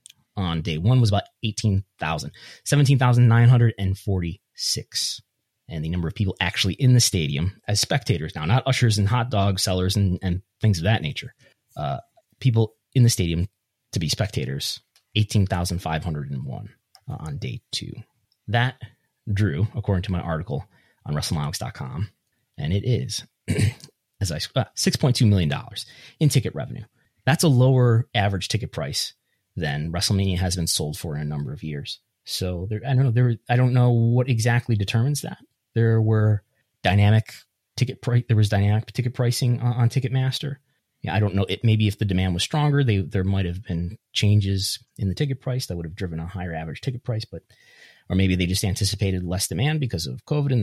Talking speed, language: 190 wpm, English